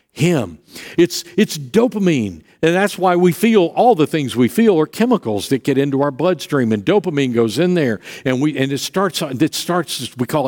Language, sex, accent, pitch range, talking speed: English, male, American, 125-175 Hz, 200 wpm